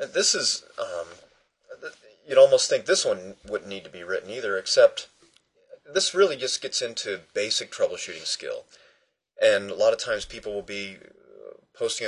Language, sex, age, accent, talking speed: English, male, 30-49, American, 160 wpm